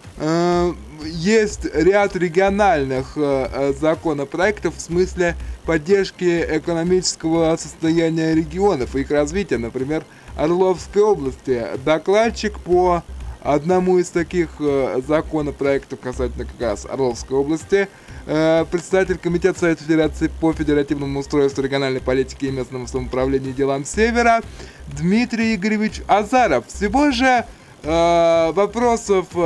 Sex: male